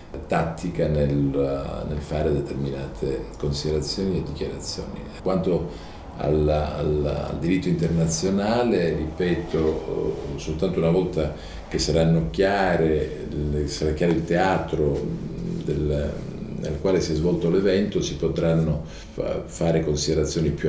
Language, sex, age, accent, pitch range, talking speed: Italian, male, 50-69, native, 75-80 Hz, 110 wpm